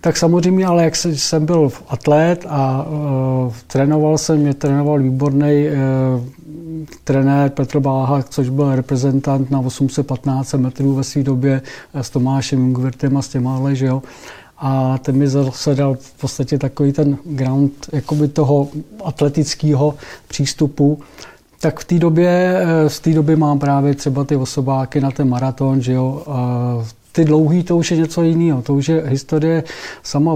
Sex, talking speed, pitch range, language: male, 155 wpm, 135-150 Hz, Czech